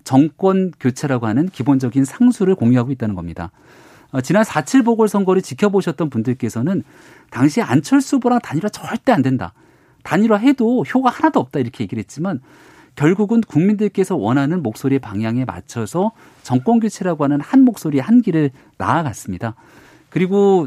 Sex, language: male, Korean